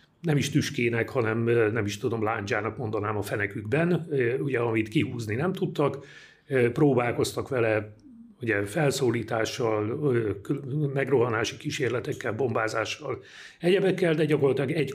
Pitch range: 115-145 Hz